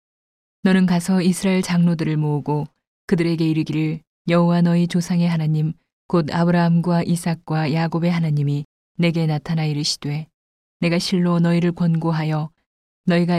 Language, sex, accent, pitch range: Korean, female, native, 155-175 Hz